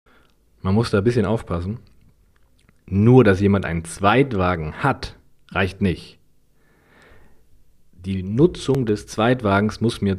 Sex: male